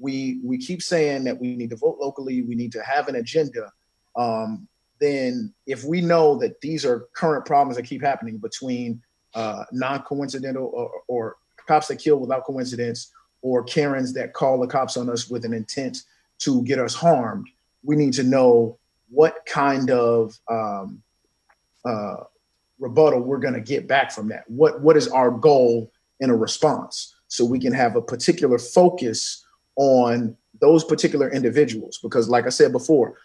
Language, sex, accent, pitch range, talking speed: English, male, American, 125-160 Hz, 170 wpm